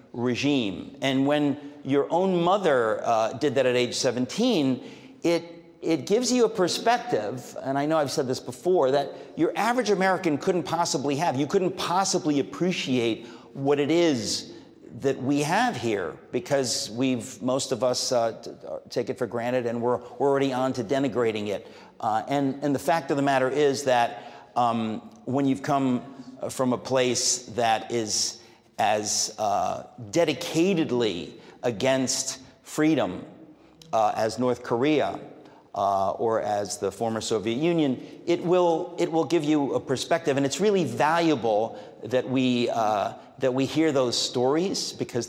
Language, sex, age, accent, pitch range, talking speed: English, male, 50-69, American, 125-160 Hz, 155 wpm